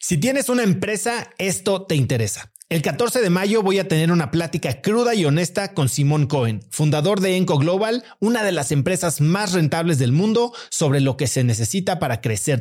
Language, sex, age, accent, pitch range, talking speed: Spanish, male, 40-59, Mexican, 135-195 Hz, 195 wpm